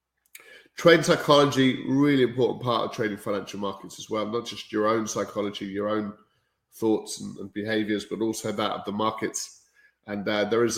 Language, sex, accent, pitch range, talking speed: English, male, British, 105-130 Hz, 175 wpm